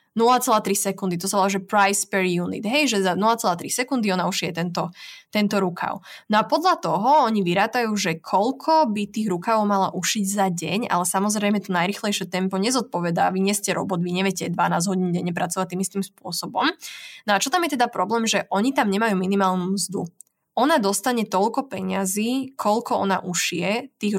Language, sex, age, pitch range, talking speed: Slovak, female, 20-39, 185-220 Hz, 180 wpm